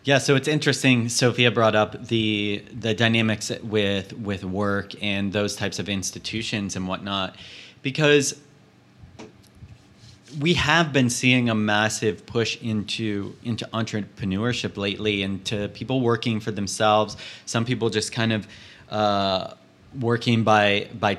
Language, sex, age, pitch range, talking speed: English, male, 30-49, 105-125 Hz, 135 wpm